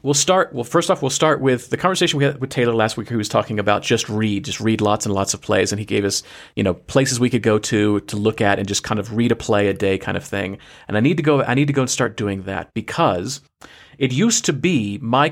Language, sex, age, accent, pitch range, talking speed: English, male, 40-59, American, 105-135 Hz, 295 wpm